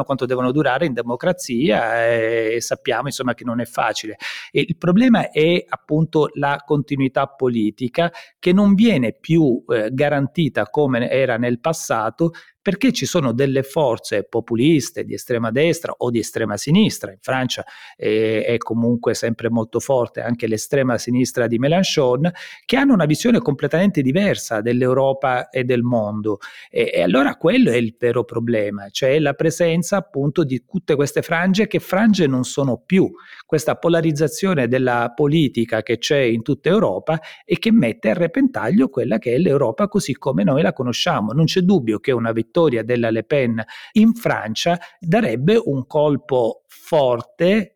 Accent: native